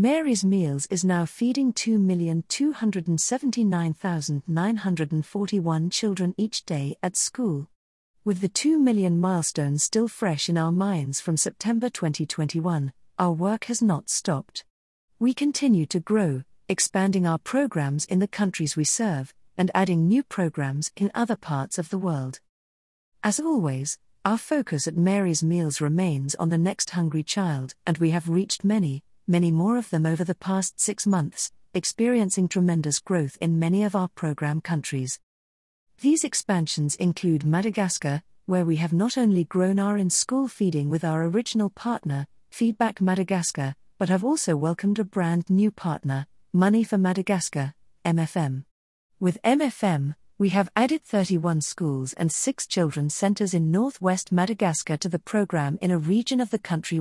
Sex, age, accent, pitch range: female, 50-69, British, 155-205 Hz